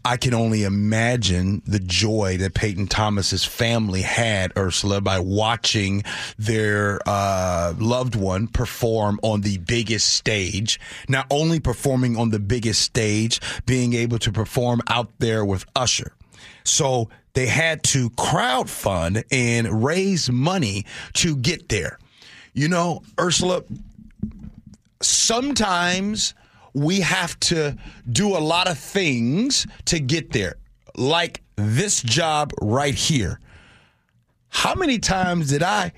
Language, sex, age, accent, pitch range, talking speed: English, male, 30-49, American, 110-170 Hz, 125 wpm